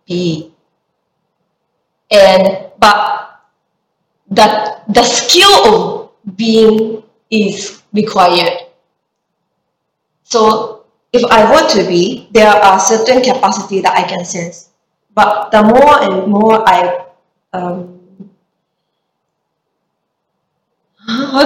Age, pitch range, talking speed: 20-39, 185-220 Hz, 90 wpm